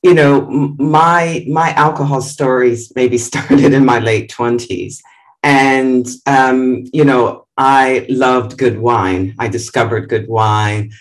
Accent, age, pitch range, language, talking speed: American, 40-59, 120-150 Hz, English, 130 wpm